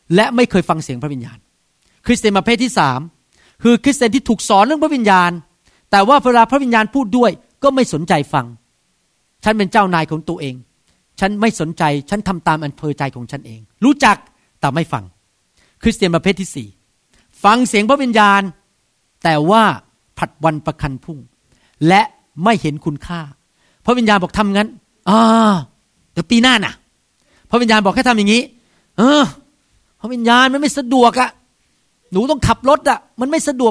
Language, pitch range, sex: Thai, 160-235 Hz, male